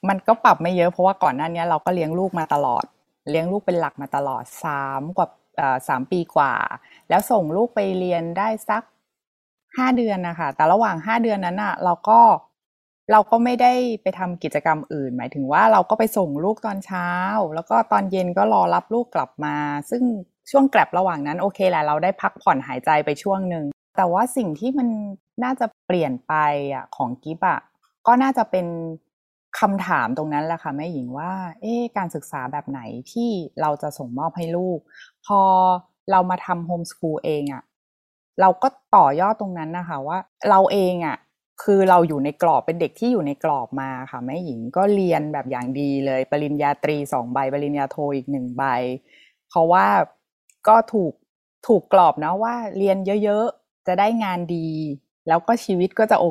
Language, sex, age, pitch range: Thai, female, 20-39, 150-210 Hz